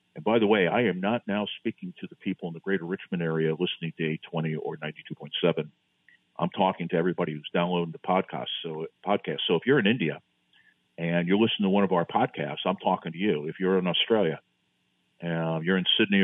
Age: 50-69